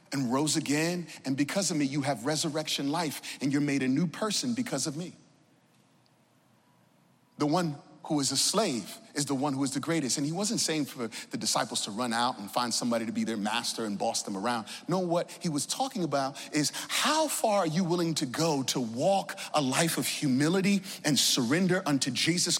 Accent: American